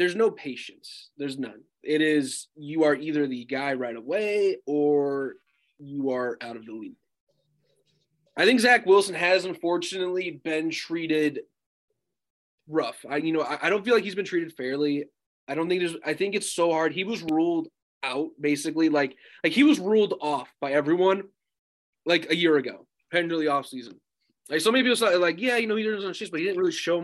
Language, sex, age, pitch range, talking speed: English, male, 20-39, 145-205 Hz, 195 wpm